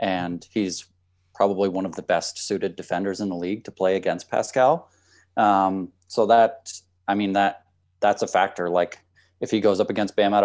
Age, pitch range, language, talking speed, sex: 20-39, 90-105 Hz, English, 190 wpm, male